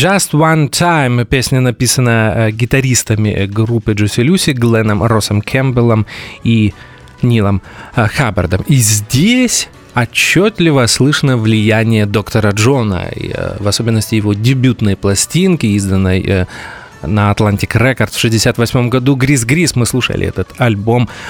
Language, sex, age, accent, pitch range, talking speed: Russian, male, 30-49, native, 110-140 Hz, 125 wpm